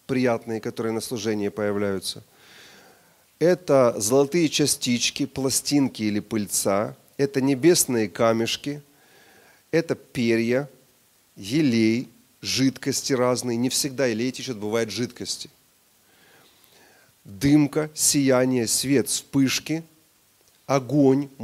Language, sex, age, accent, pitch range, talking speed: Russian, male, 30-49, native, 115-140 Hz, 85 wpm